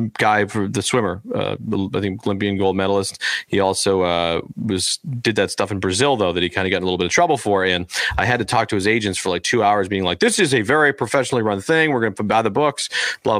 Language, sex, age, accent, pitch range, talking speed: English, male, 40-59, American, 95-110 Hz, 265 wpm